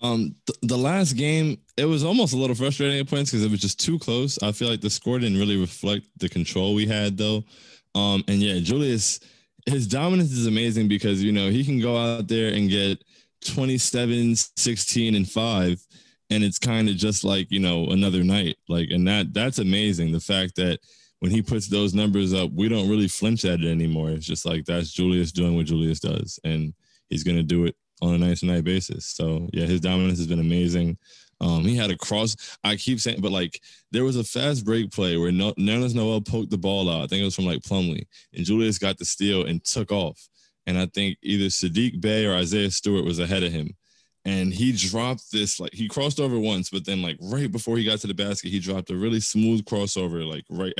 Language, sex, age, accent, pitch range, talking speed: English, male, 20-39, American, 90-115 Hz, 225 wpm